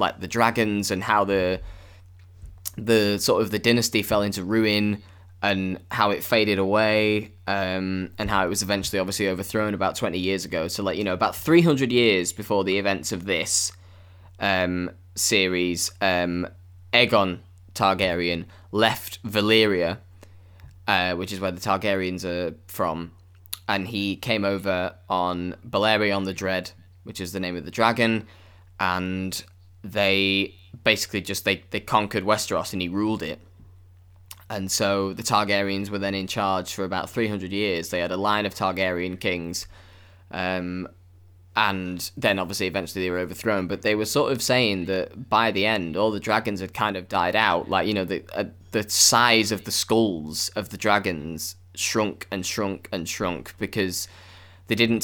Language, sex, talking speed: English, male, 165 wpm